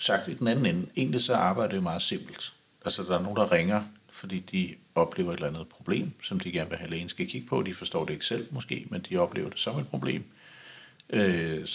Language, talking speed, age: Danish, 245 wpm, 60-79